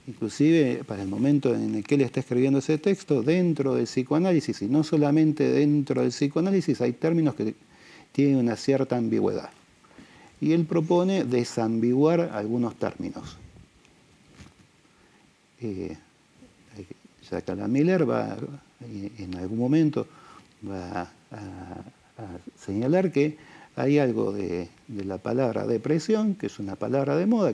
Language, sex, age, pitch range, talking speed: Spanish, male, 50-69, 115-160 Hz, 135 wpm